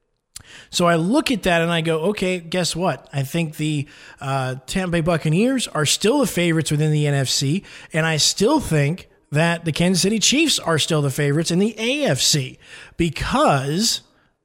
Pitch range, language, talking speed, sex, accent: 145-175 Hz, English, 175 wpm, male, American